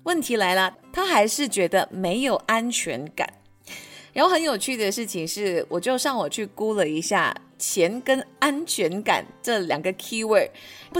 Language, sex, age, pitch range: Chinese, female, 20-39, 195-305 Hz